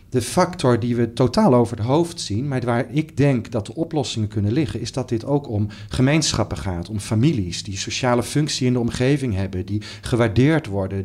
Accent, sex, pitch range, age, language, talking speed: Dutch, male, 110-140 Hz, 40-59, Dutch, 200 wpm